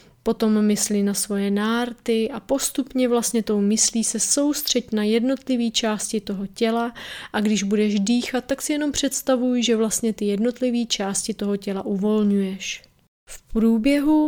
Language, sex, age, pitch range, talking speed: Czech, female, 30-49, 210-240 Hz, 145 wpm